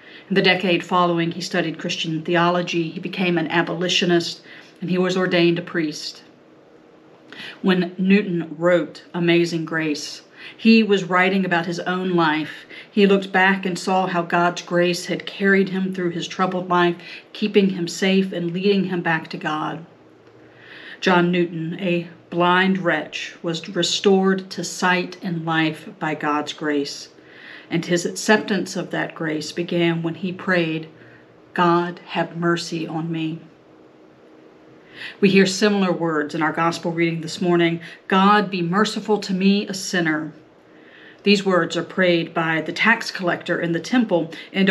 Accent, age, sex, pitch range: American, 50-69, female, 165-190 Hz